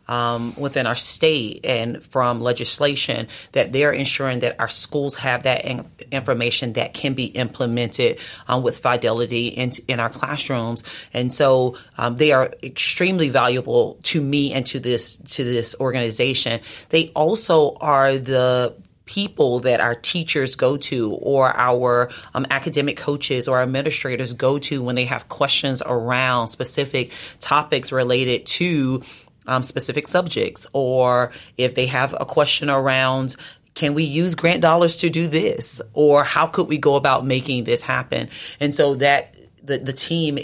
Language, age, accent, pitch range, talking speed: English, 30-49, American, 120-145 Hz, 155 wpm